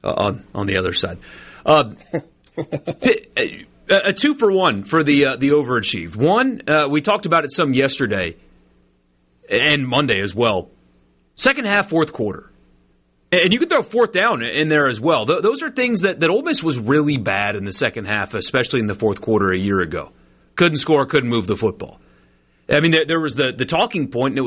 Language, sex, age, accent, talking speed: English, male, 30-49, American, 195 wpm